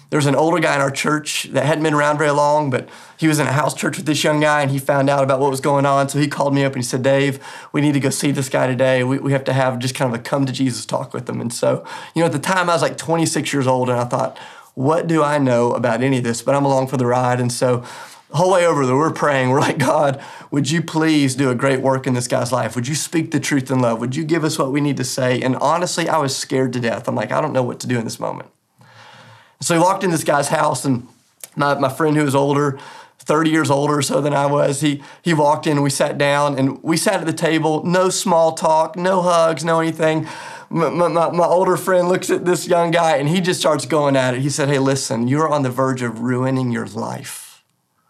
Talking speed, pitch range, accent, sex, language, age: 280 wpm, 130-160 Hz, American, male, English, 30-49